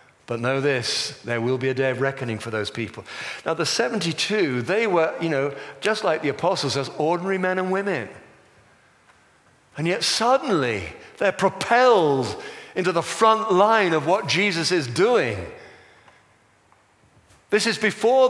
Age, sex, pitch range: 50-69, male, 150-200 Hz